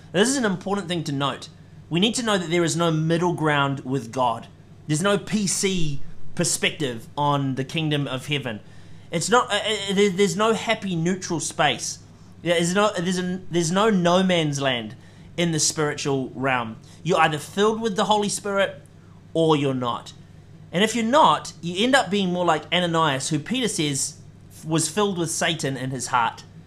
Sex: male